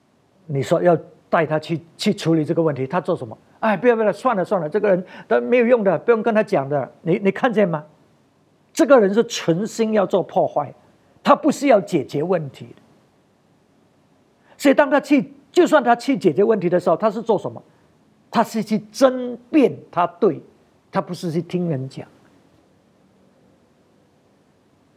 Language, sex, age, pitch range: English, male, 50-69, 145-200 Hz